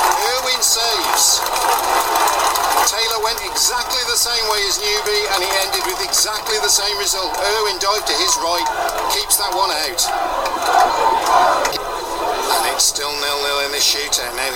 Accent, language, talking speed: British, English, 145 wpm